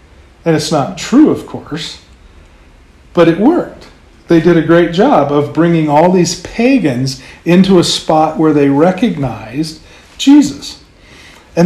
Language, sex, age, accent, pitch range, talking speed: English, male, 40-59, American, 150-195 Hz, 140 wpm